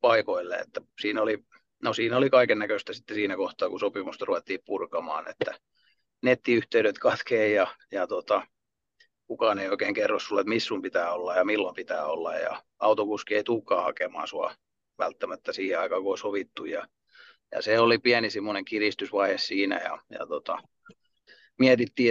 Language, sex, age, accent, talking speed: Finnish, male, 30-49, native, 150 wpm